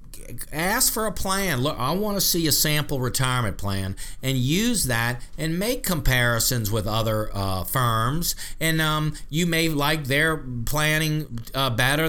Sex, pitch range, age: male, 115-150 Hz, 50-69